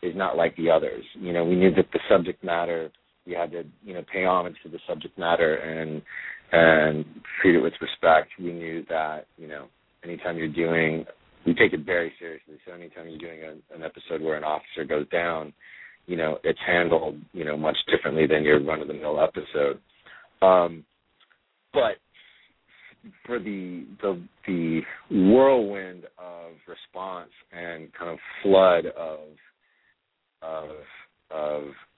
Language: English